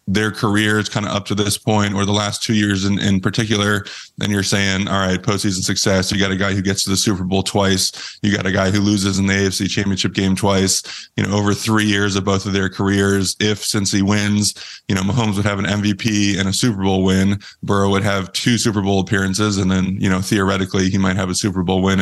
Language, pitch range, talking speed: English, 95-105 Hz, 250 wpm